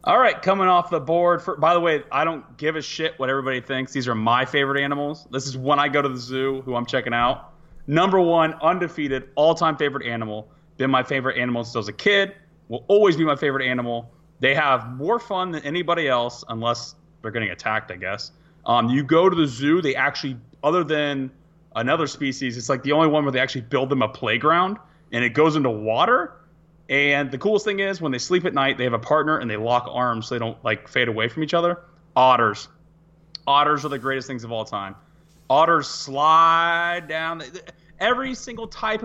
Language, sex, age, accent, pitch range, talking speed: English, male, 30-49, American, 125-165 Hz, 215 wpm